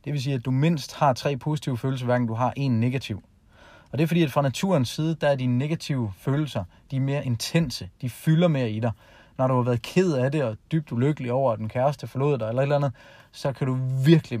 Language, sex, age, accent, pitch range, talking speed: Danish, male, 30-49, native, 115-145 Hz, 255 wpm